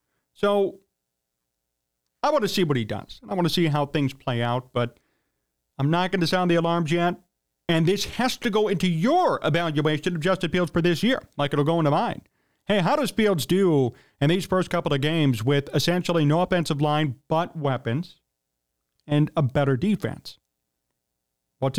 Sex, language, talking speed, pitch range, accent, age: male, English, 185 wpm, 130-180 Hz, American, 40-59